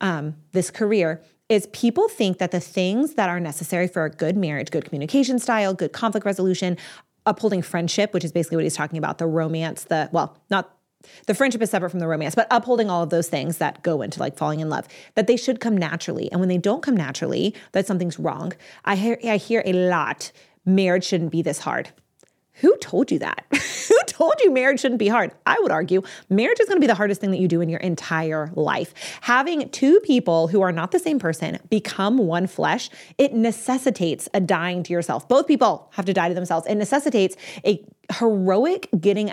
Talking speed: 215 wpm